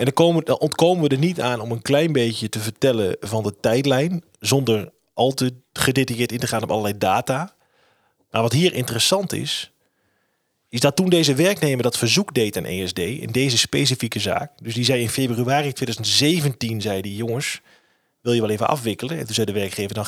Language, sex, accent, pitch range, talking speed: Dutch, male, Dutch, 115-155 Hz, 195 wpm